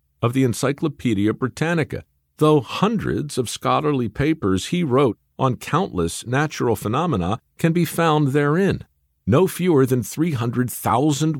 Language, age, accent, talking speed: English, 50-69, American, 120 wpm